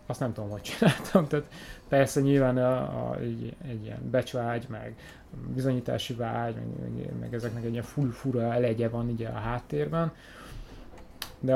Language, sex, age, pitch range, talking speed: Hungarian, male, 20-39, 115-140 Hz, 155 wpm